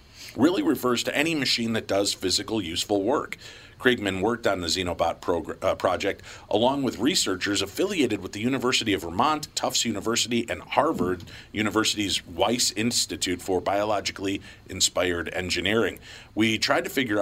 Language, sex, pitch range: English, male, 95-120 Hz